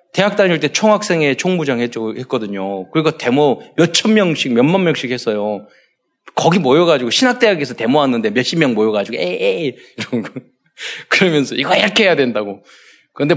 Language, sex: Korean, male